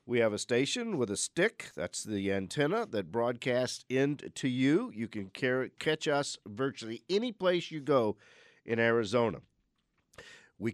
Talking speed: 145 wpm